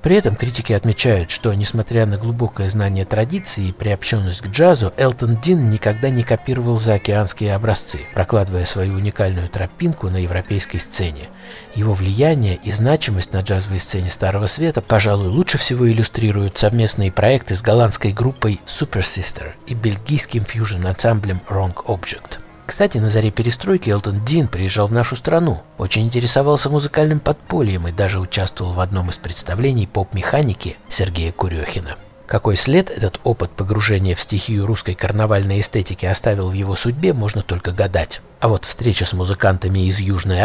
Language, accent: Russian, native